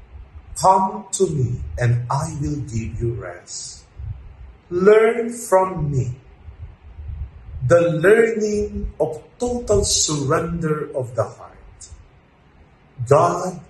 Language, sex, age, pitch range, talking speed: English, male, 50-69, 95-155 Hz, 90 wpm